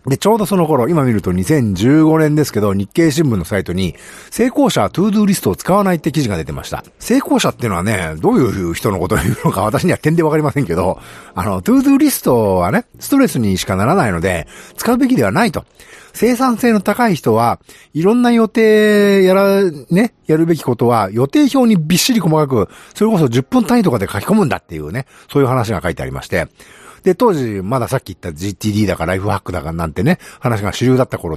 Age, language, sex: 50-69, Japanese, male